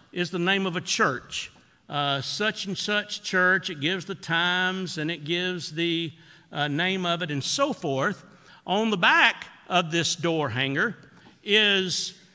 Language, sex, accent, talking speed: English, male, American, 165 wpm